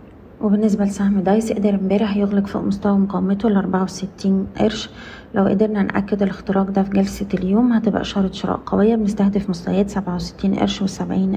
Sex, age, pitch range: female, 30-49, 190-210 Hz